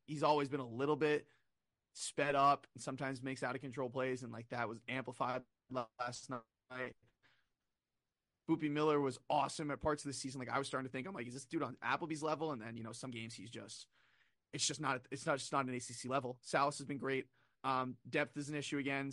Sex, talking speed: male, 230 wpm